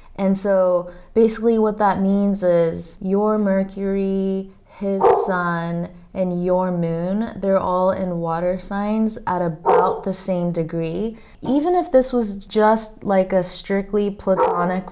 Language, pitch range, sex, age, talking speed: English, 170-195 Hz, female, 20-39, 135 wpm